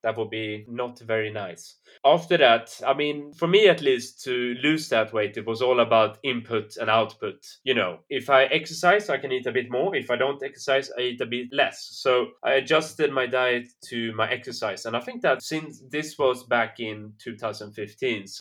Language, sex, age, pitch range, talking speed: English, male, 20-39, 110-135 Hz, 205 wpm